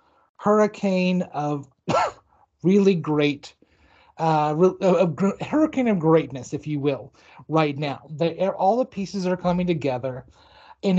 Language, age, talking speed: English, 30-49, 135 wpm